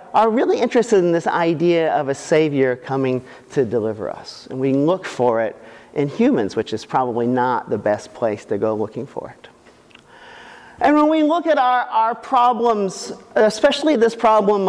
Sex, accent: male, American